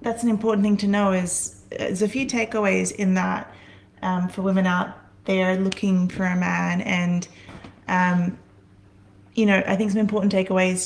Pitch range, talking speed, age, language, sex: 185-215 Hz, 170 wpm, 30-49, English, female